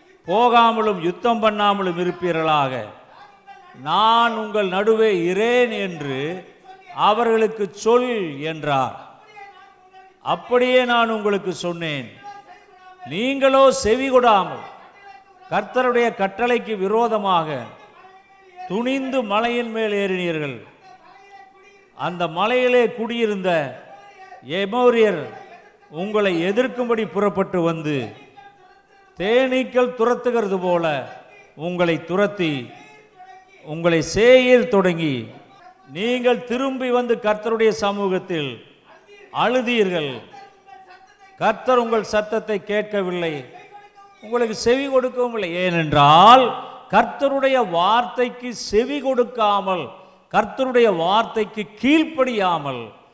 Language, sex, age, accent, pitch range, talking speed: Tamil, male, 50-69, native, 190-270 Hz, 65 wpm